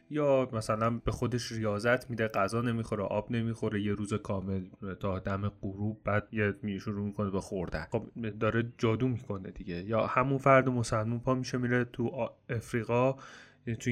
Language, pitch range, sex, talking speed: Persian, 110-130 Hz, male, 165 wpm